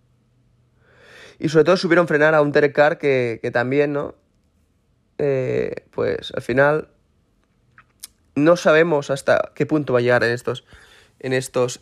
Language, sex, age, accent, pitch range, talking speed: Spanish, male, 20-39, Spanish, 120-150 Hz, 145 wpm